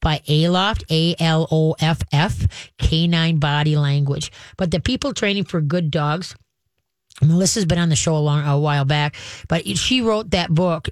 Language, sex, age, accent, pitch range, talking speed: English, female, 30-49, American, 155-190 Hz, 155 wpm